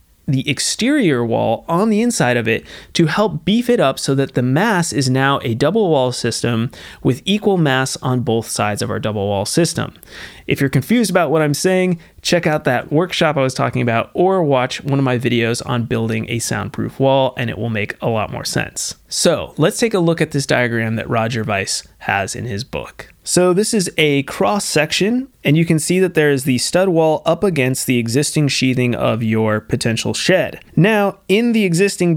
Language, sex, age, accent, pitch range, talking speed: English, male, 30-49, American, 125-170 Hz, 210 wpm